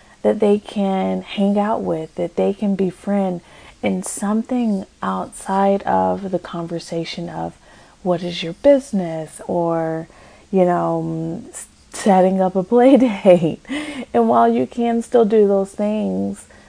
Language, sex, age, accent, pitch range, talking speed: English, female, 30-49, American, 165-200 Hz, 135 wpm